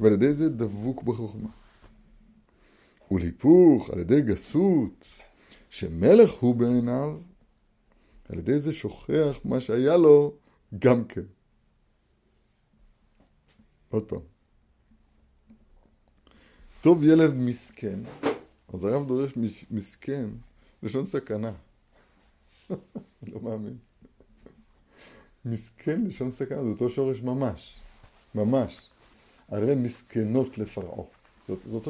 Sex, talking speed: male, 95 wpm